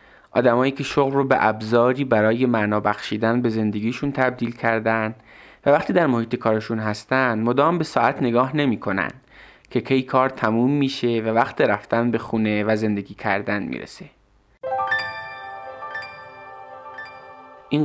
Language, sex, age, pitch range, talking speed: Persian, male, 20-39, 110-130 Hz, 130 wpm